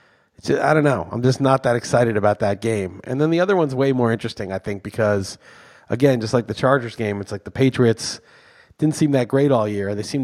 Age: 30-49